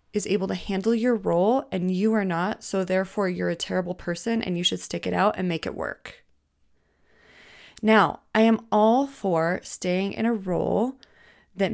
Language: English